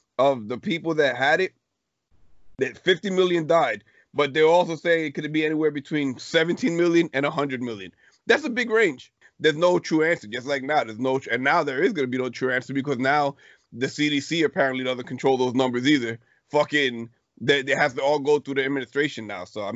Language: English